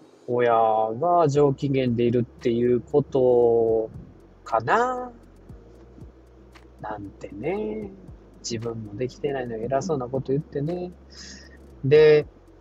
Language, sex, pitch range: Japanese, male, 115-150 Hz